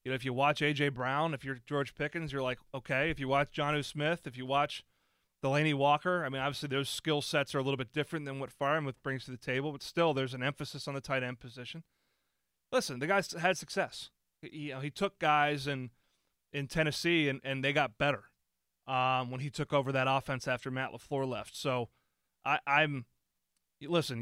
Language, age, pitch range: English, 30-49, 130-155 Hz